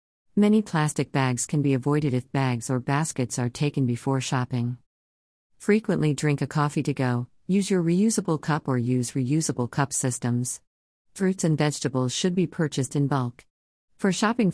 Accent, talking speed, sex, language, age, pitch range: American, 160 wpm, female, English, 50-69, 130-160 Hz